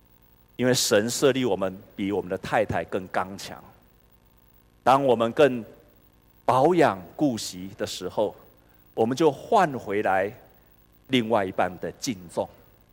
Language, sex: Chinese, male